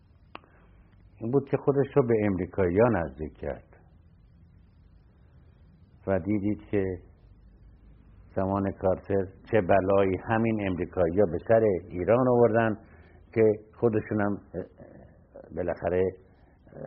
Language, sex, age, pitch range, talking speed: Persian, male, 60-79, 85-110 Hz, 95 wpm